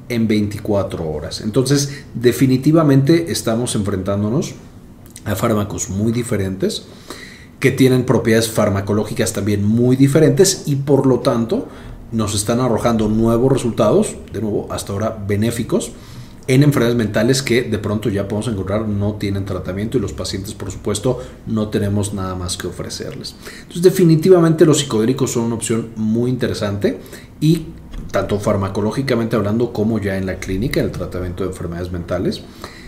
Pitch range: 100-120 Hz